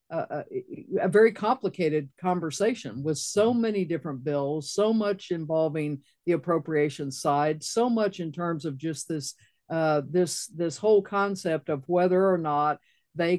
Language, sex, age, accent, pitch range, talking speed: English, female, 60-79, American, 155-180 Hz, 150 wpm